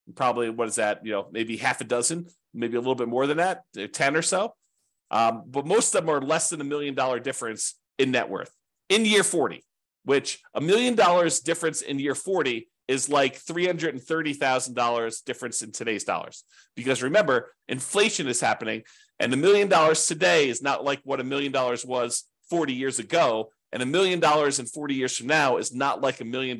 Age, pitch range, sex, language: 40-59, 120-160 Hz, male, English